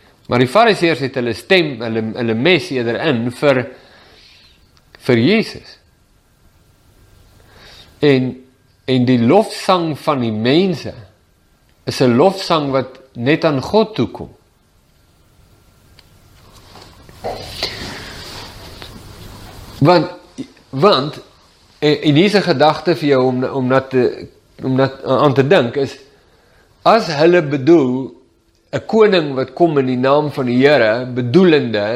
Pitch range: 115-155 Hz